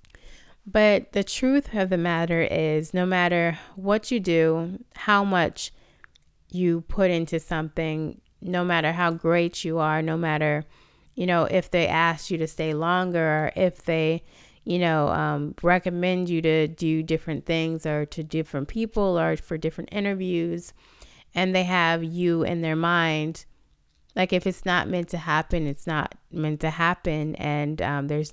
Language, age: English, 30-49